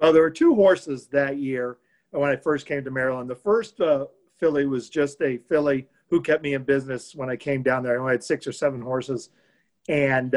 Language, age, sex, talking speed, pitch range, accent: English, 50-69, male, 225 wpm, 130-150 Hz, American